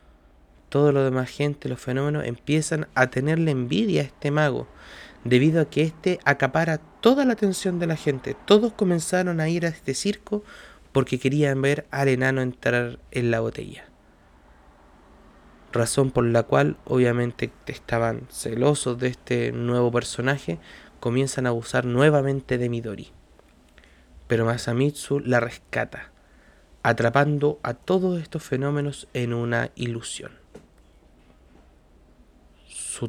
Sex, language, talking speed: male, Spanish, 125 wpm